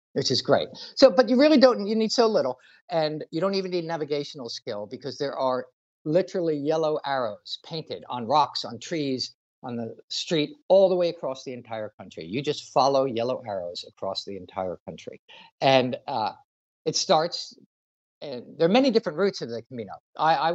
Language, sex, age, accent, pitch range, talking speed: English, male, 50-69, American, 125-180 Hz, 185 wpm